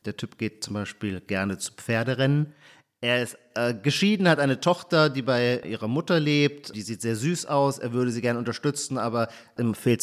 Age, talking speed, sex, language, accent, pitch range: 40-59, 195 wpm, male, German, German, 115-145 Hz